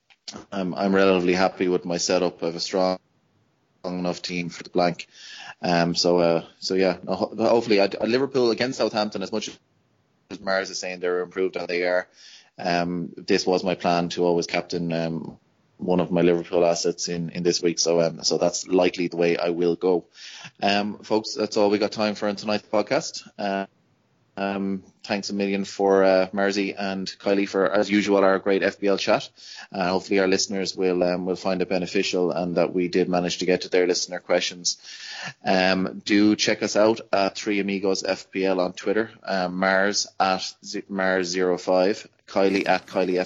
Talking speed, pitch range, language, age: 185 wpm, 90-100 Hz, English, 20-39